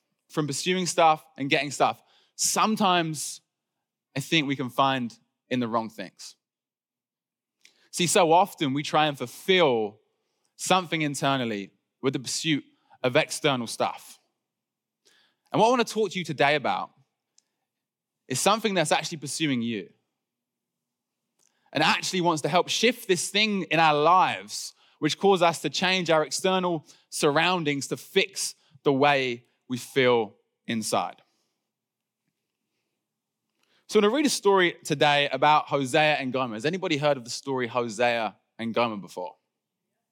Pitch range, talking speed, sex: 125-175 Hz, 140 wpm, male